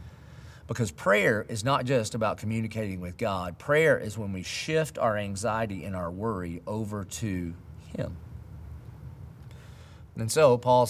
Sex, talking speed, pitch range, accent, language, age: male, 140 wpm, 100-130 Hz, American, English, 40-59